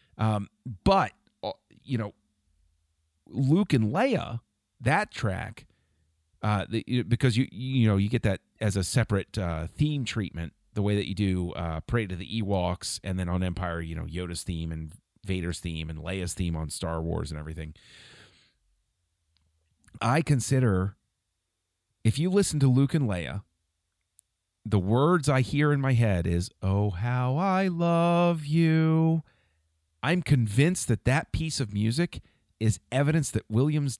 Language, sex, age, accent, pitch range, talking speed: English, male, 40-59, American, 90-130 Hz, 150 wpm